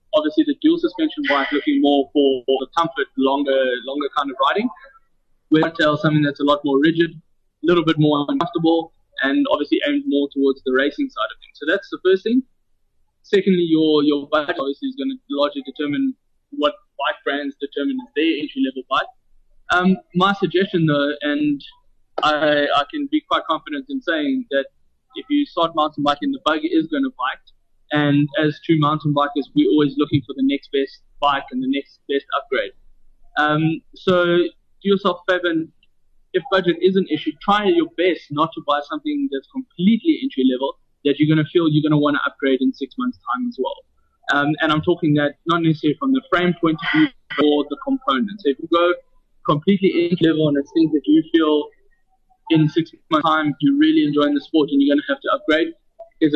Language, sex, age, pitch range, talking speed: English, male, 20-39, 145-200 Hz, 200 wpm